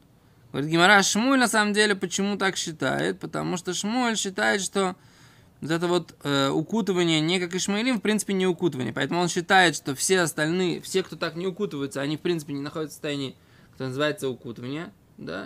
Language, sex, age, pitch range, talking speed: Russian, male, 20-39, 150-200 Hz, 185 wpm